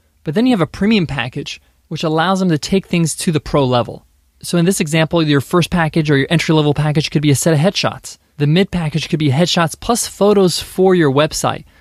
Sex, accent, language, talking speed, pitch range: male, American, English, 235 wpm, 135-185 Hz